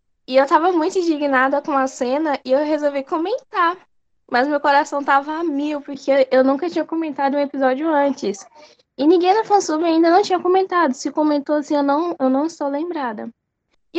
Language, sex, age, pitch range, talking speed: Portuguese, female, 10-29, 240-310 Hz, 185 wpm